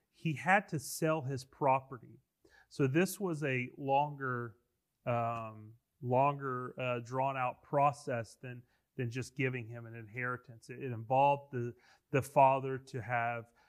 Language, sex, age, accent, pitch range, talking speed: English, male, 30-49, American, 120-150 Hz, 135 wpm